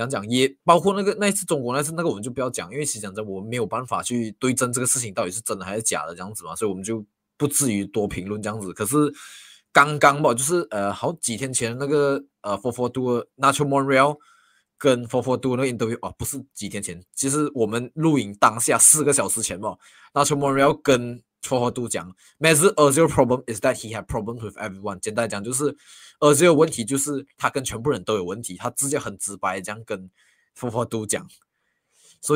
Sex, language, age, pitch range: male, Chinese, 20-39, 110-145 Hz